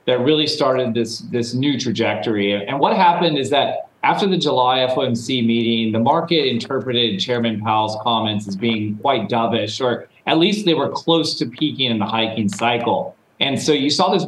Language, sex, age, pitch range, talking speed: English, male, 40-59, 120-155 Hz, 185 wpm